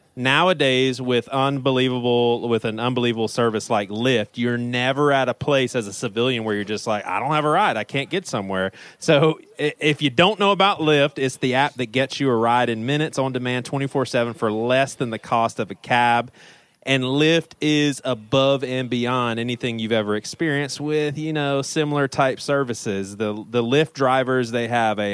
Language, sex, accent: English, male, American